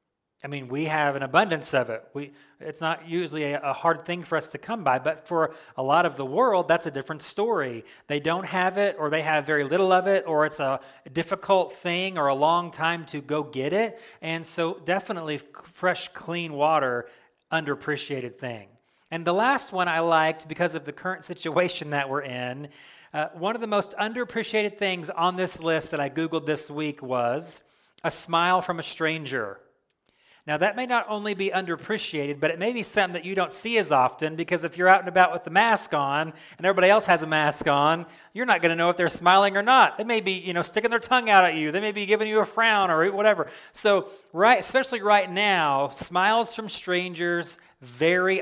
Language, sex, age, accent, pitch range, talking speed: English, male, 30-49, American, 150-190 Hz, 215 wpm